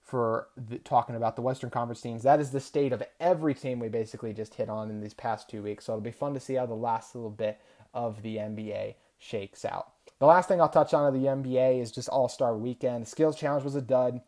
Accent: American